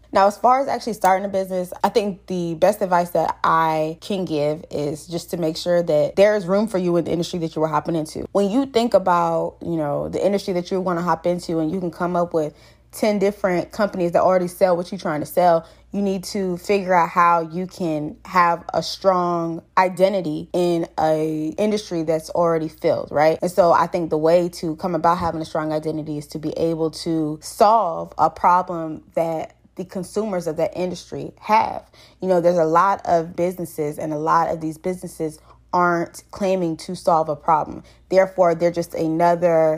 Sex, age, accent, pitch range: female, 20-39, American, 160-185 Hz